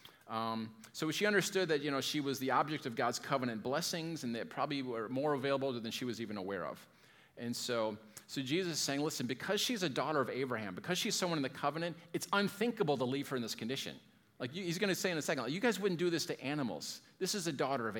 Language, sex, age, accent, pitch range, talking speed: English, male, 40-59, American, 125-165 Hz, 255 wpm